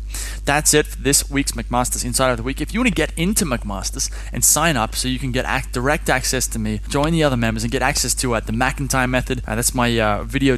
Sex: male